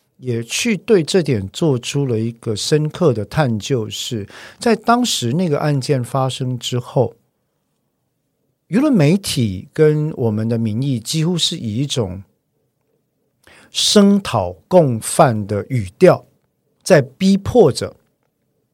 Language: Chinese